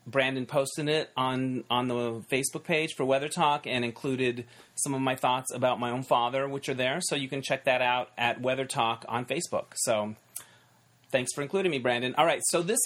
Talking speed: 210 wpm